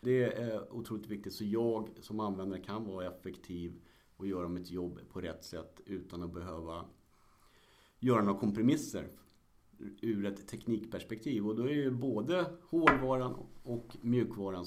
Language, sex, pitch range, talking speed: Swedish, male, 95-120 Hz, 145 wpm